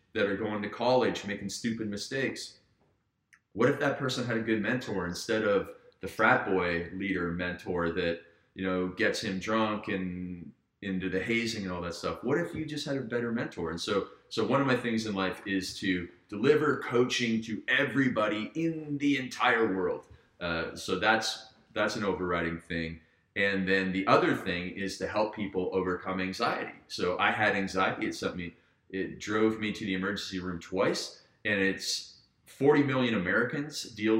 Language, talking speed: English, 180 wpm